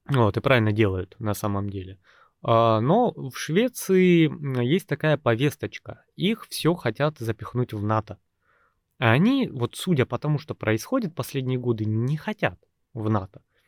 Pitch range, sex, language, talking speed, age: 110-160 Hz, male, Russian, 150 wpm, 20-39